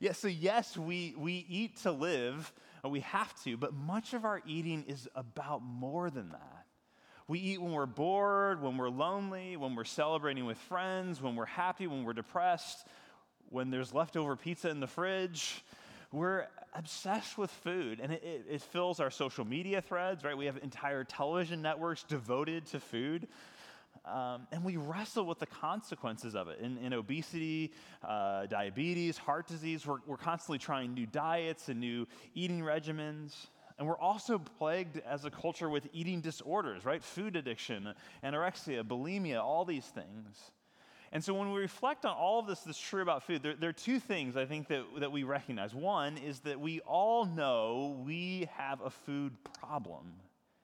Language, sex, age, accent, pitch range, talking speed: English, male, 30-49, American, 135-180 Hz, 180 wpm